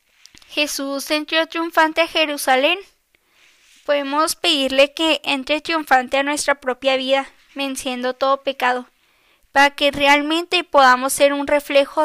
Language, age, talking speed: Spanish, 10-29, 120 wpm